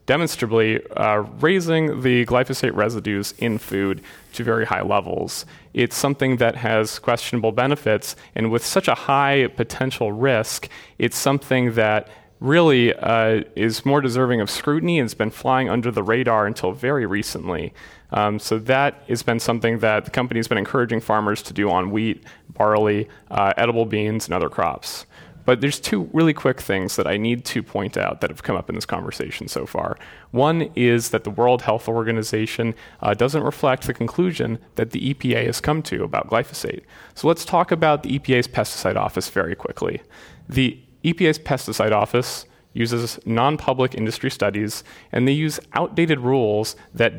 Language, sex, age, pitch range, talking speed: English, male, 30-49, 110-135 Hz, 170 wpm